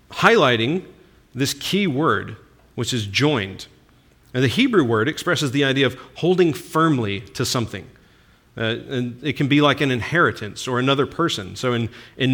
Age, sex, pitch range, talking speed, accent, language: 40-59, male, 110-150 Hz, 155 wpm, American, English